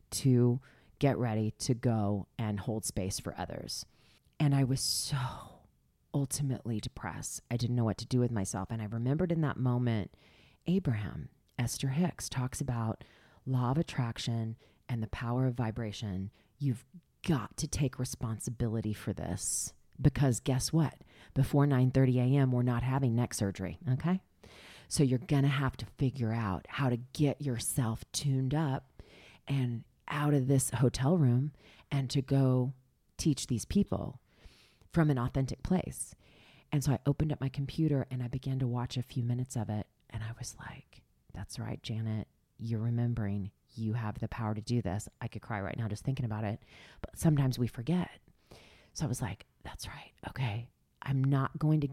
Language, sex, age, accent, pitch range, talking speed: English, female, 40-59, American, 115-135 Hz, 170 wpm